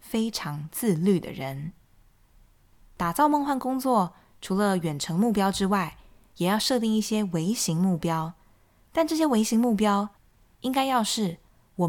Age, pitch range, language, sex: 20-39, 160-225 Hz, Chinese, female